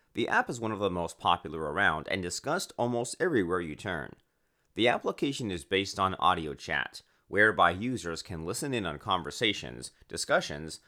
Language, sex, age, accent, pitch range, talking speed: English, male, 30-49, American, 85-110 Hz, 165 wpm